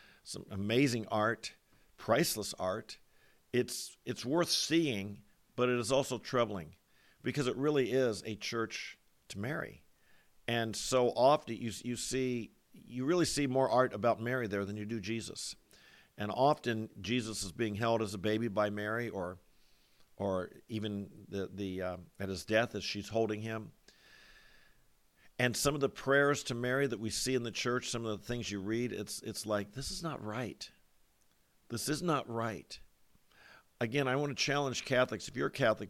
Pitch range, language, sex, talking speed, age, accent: 105-130 Hz, English, male, 175 wpm, 50-69, American